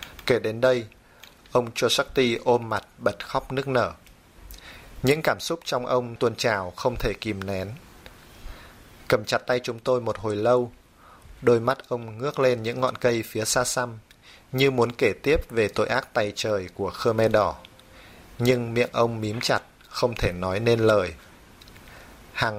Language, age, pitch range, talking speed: Vietnamese, 20-39, 105-125 Hz, 175 wpm